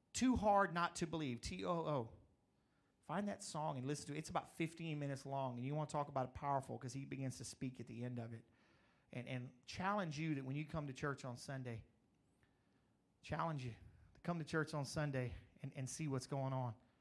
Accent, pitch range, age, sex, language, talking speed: American, 125-145 Hz, 40-59, male, English, 220 wpm